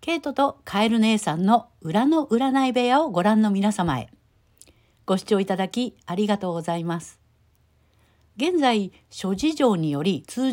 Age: 60-79